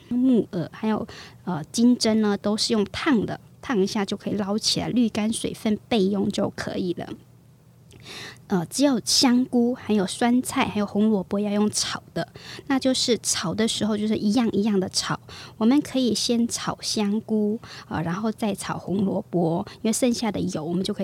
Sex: male